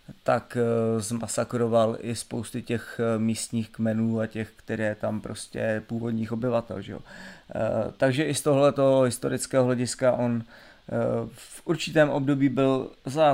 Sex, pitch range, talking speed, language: male, 115-130 Hz, 125 wpm, Czech